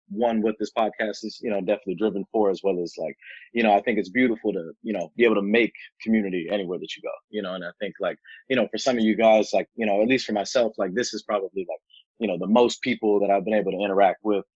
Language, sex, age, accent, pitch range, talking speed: English, male, 30-49, American, 100-115 Hz, 285 wpm